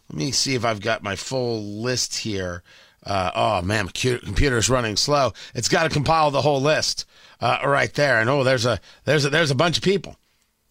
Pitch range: 170-250 Hz